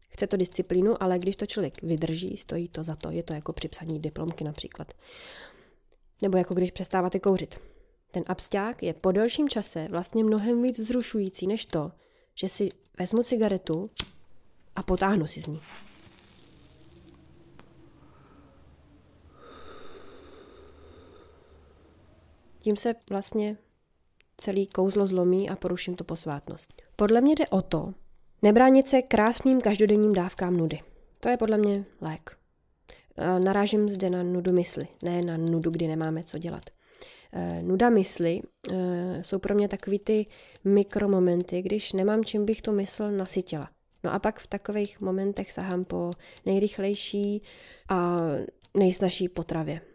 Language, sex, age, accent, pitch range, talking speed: Czech, female, 20-39, native, 175-210 Hz, 130 wpm